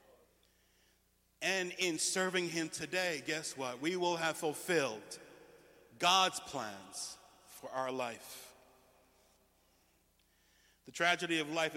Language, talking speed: English, 100 wpm